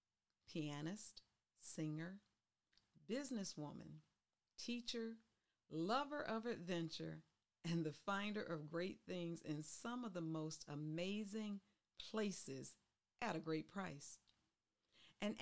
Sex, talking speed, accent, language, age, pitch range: female, 95 wpm, American, English, 40-59, 155-205 Hz